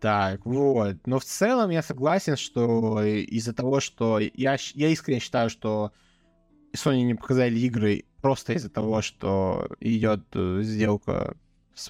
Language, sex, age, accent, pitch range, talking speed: Russian, male, 20-39, native, 105-125 Hz, 135 wpm